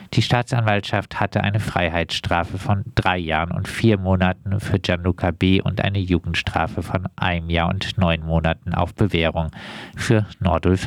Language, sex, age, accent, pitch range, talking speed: German, male, 50-69, German, 90-110 Hz, 150 wpm